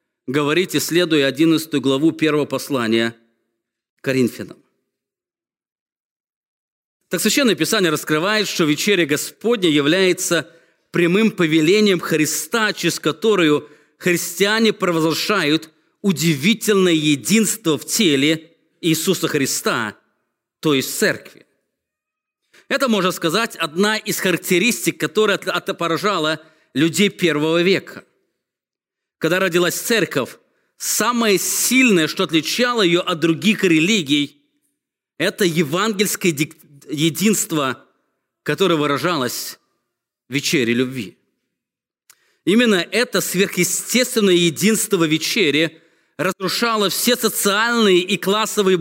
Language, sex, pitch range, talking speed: English, male, 155-205 Hz, 90 wpm